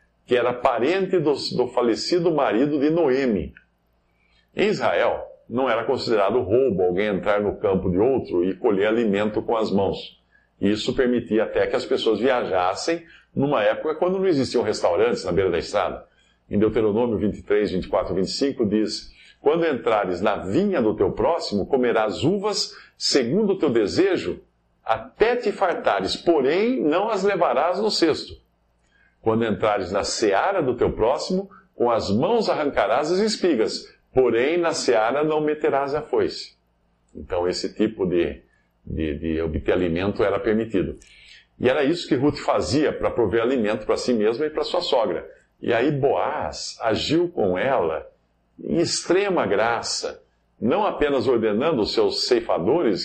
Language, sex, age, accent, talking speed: English, male, 50-69, Brazilian, 150 wpm